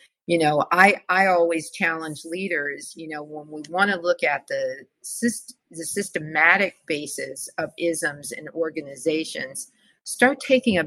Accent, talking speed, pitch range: American, 150 wpm, 150-190 Hz